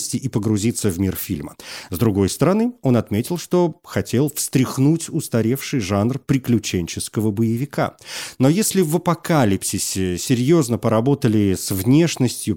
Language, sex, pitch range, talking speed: Russian, male, 105-150 Hz, 120 wpm